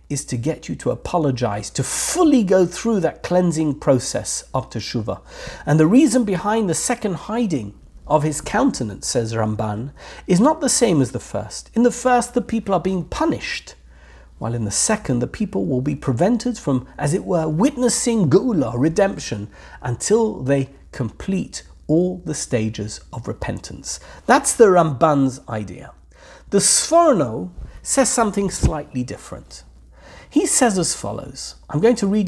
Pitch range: 125-210 Hz